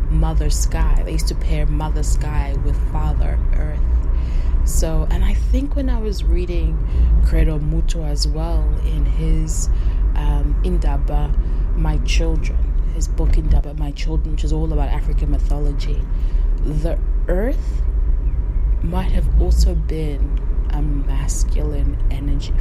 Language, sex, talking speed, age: English, female, 130 wpm, 20-39